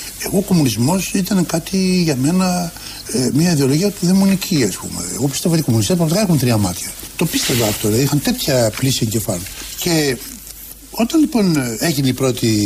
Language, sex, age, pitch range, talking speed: Greek, male, 60-79, 120-200 Hz, 175 wpm